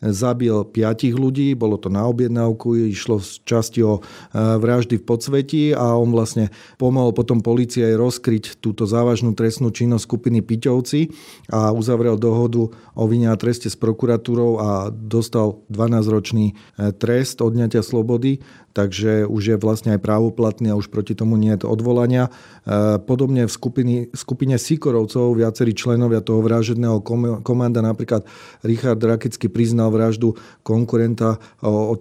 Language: Slovak